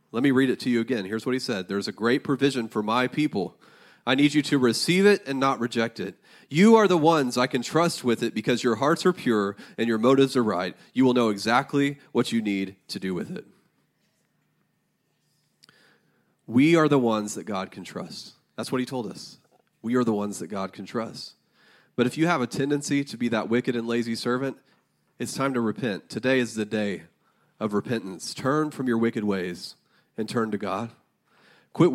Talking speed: 210 wpm